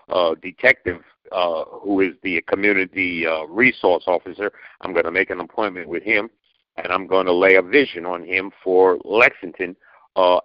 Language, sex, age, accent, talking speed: English, male, 60-79, American, 170 wpm